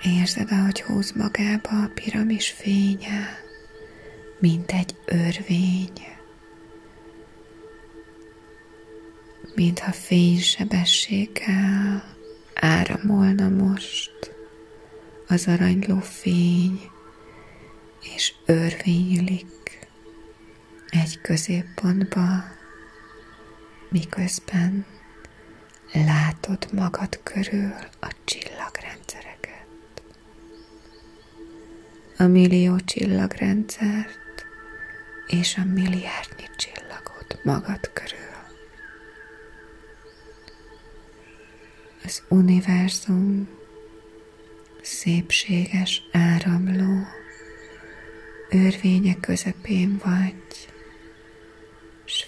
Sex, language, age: female, Hungarian, 30-49